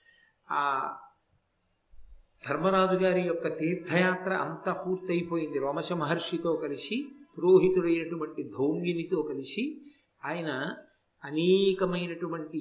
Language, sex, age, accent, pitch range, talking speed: Telugu, male, 50-69, native, 155-190 Hz, 65 wpm